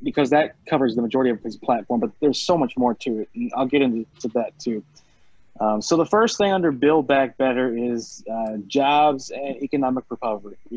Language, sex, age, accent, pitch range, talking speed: English, male, 20-39, American, 115-145 Hz, 205 wpm